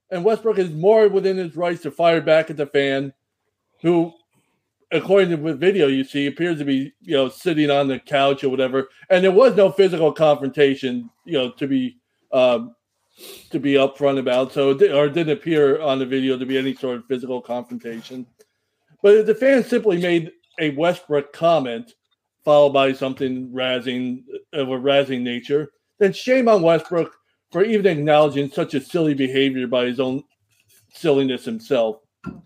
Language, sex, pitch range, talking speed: English, male, 135-180 Hz, 175 wpm